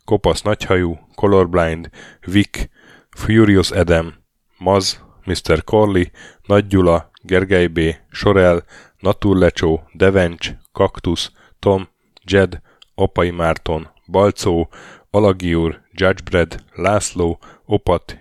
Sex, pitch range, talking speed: male, 85-100 Hz, 80 wpm